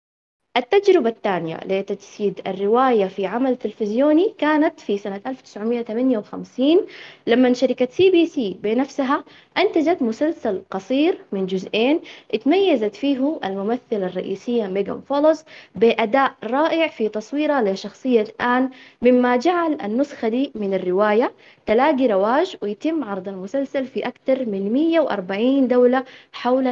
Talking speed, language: 115 wpm, Arabic